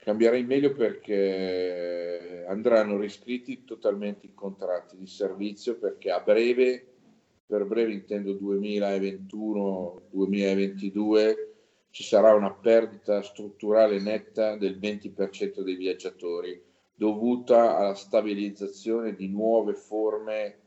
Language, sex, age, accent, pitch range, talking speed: Italian, male, 50-69, native, 100-115 Hz, 95 wpm